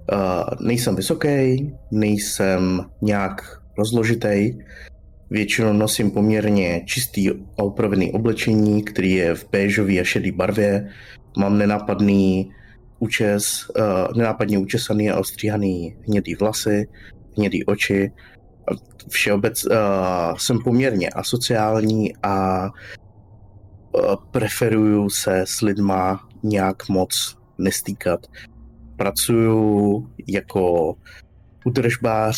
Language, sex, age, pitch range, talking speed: Czech, male, 20-39, 95-110 Hz, 90 wpm